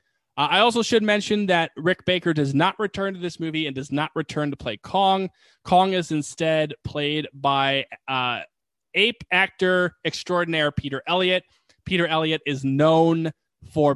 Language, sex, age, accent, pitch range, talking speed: English, male, 20-39, American, 140-180 Hz, 160 wpm